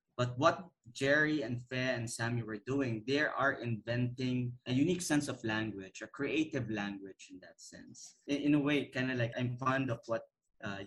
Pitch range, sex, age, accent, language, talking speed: 110-135 Hz, male, 20-39, Filipino, English, 195 wpm